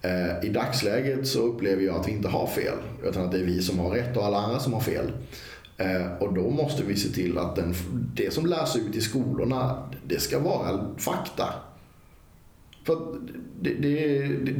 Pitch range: 95-135 Hz